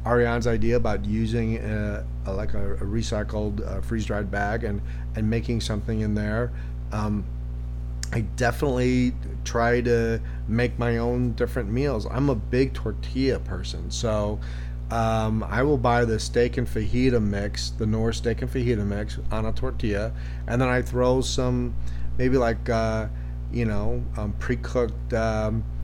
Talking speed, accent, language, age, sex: 150 wpm, American, English, 40-59, male